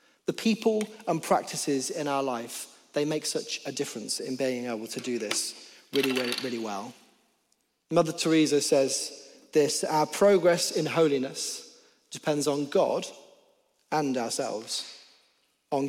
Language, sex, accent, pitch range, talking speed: English, male, British, 130-160 Hz, 135 wpm